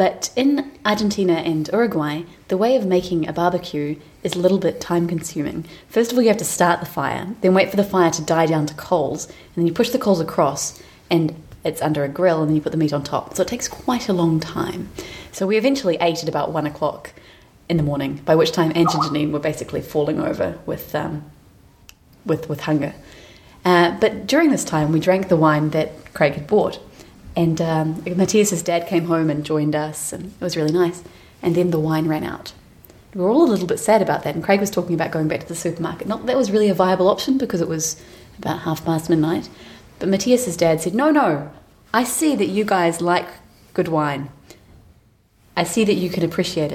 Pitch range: 155-190 Hz